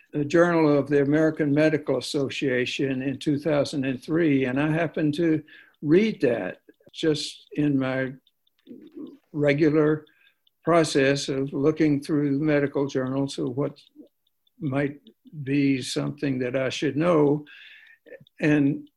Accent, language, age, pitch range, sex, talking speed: American, English, 60-79, 135-160 Hz, male, 110 wpm